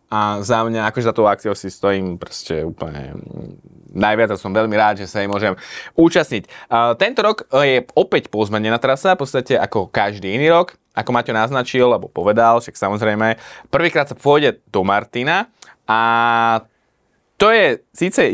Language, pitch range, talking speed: Slovak, 110-145 Hz, 160 wpm